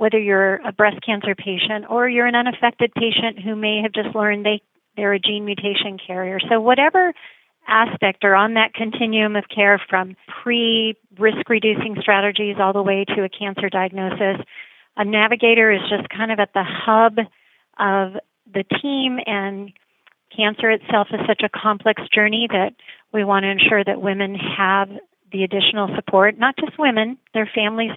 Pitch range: 195-225 Hz